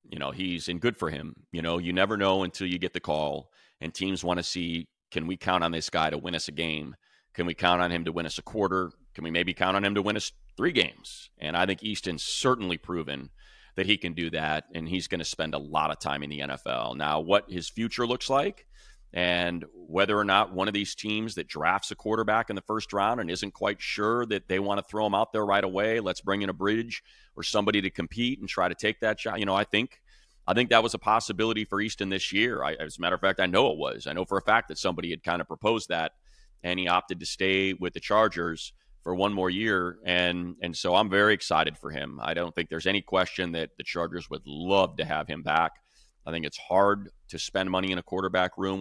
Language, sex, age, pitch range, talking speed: English, male, 30-49, 85-100 Hz, 260 wpm